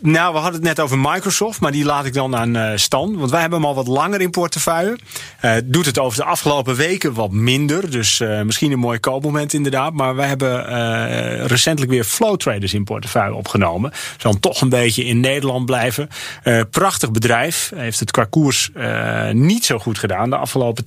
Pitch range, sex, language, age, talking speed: 110-145 Hz, male, Dutch, 30-49, 205 wpm